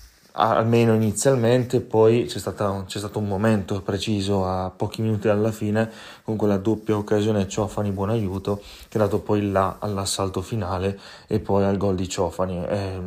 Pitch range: 95-110 Hz